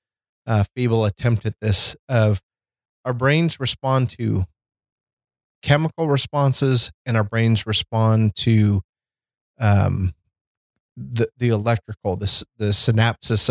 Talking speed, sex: 110 wpm, male